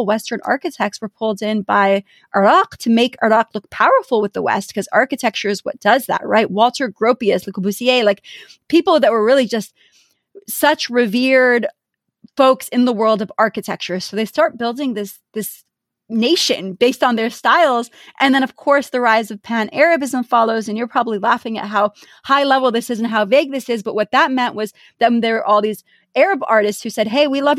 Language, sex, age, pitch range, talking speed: English, female, 30-49, 210-255 Hz, 200 wpm